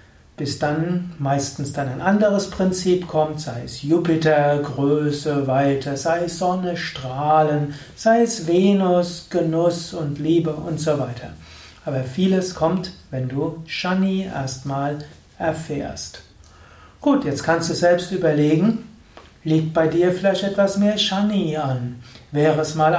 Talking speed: 135 wpm